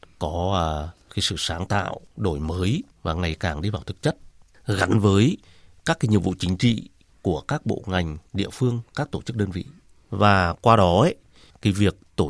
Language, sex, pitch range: Vietnamese, male, 90-125 Hz